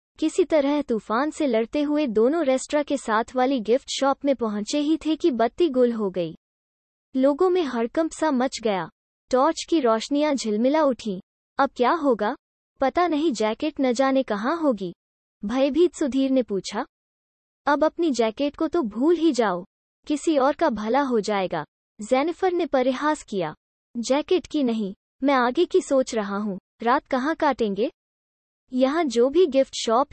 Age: 20-39